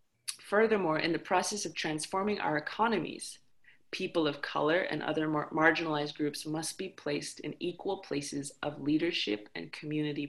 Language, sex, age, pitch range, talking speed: English, female, 30-49, 155-185 Hz, 145 wpm